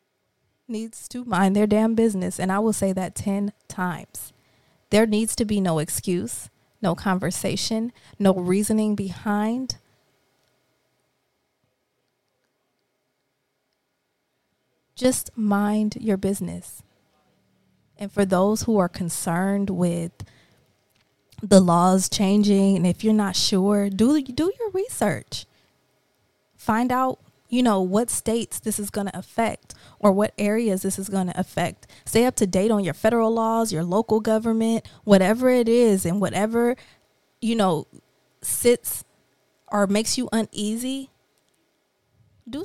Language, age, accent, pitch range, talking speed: English, 20-39, American, 185-225 Hz, 125 wpm